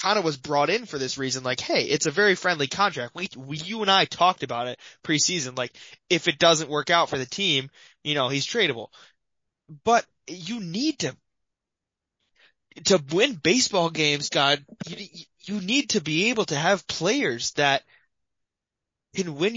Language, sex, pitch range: English, male, 140-205 Hz